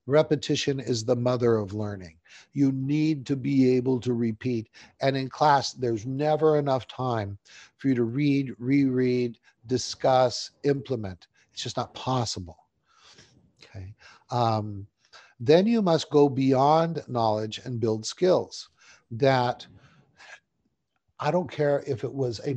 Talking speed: 135 wpm